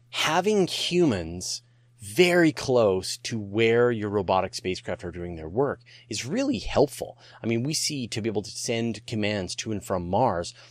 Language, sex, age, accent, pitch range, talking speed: English, male, 30-49, American, 95-120 Hz, 170 wpm